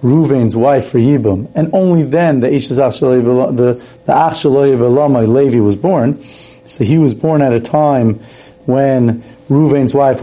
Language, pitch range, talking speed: English, 125-160 Hz, 135 wpm